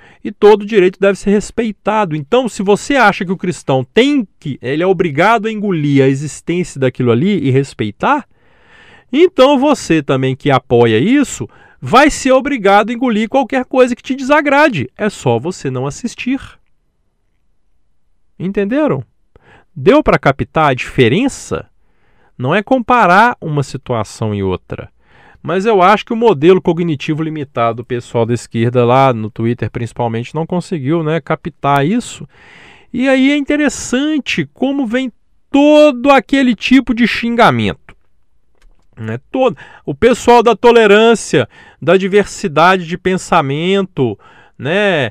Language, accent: Portuguese, Brazilian